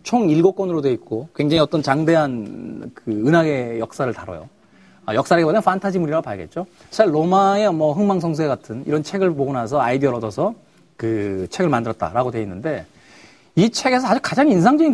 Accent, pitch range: native, 135-195 Hz